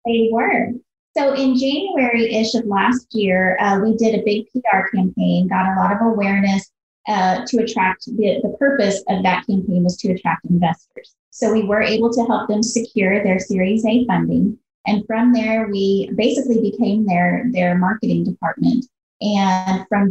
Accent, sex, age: American, female, 30-49